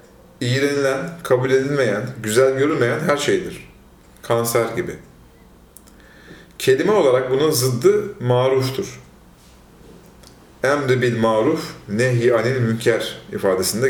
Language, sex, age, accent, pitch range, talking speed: Turkish, male, 40-59, native, 110-145 Hz, 90 wpm